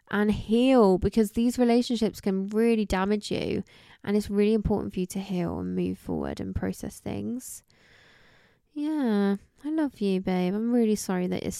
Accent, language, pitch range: British, English, 175-235 Hz